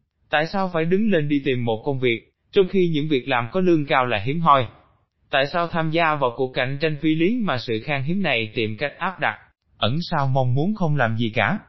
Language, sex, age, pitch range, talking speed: Vietnamese, male, 20-39, 120-170 Hz, 245 wpm